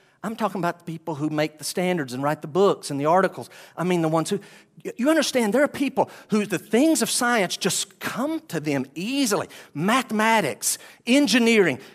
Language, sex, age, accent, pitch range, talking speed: English, male, 50-69, American, 190-270 Hz, 190 wpm